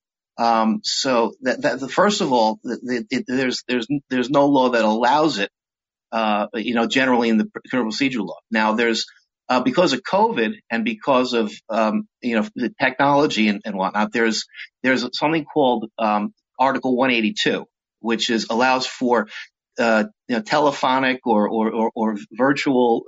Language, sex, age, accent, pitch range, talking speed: English, male, 50-69, American, 110-140 Hz, 170 wpm